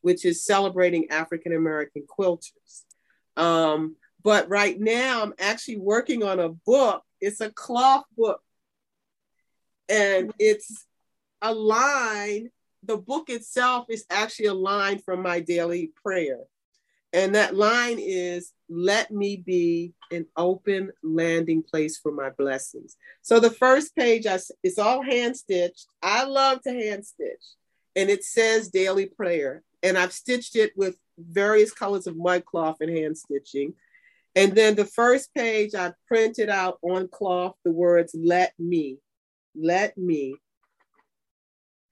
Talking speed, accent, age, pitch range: 135 wpm, American, 40-59, 170-225 Hz